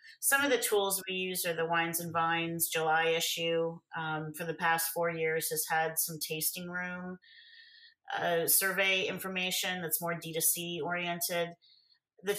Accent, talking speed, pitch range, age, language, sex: American, 165 wpm, 155-180 Hz, 40-59, English, female